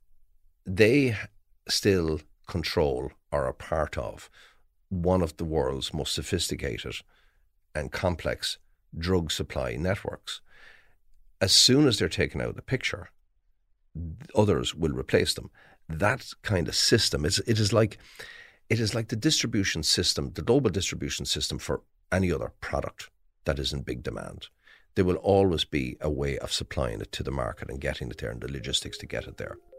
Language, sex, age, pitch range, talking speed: English, male, 50-69, 75-110 Hz, 165 wpm